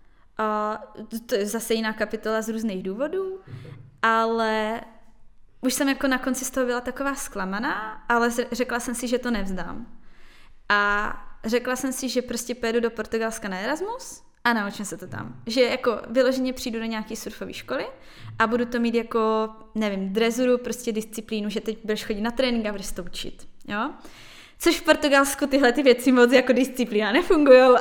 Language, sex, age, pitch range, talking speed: Czech, female, 20-39, 215-255 Hz, 175 wpm